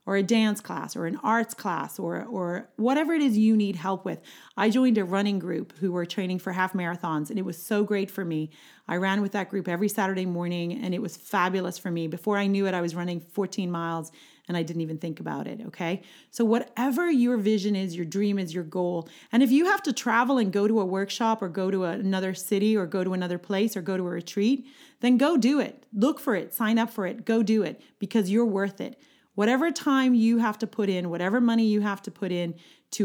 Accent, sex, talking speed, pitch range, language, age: American, female, 245 wpm, 180-235 Hz, English, 30-49